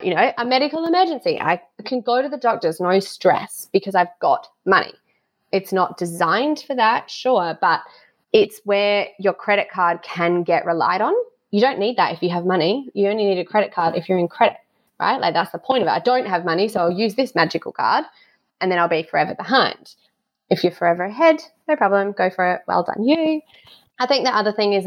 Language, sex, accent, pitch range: English, female, Australian, 185-240 Hz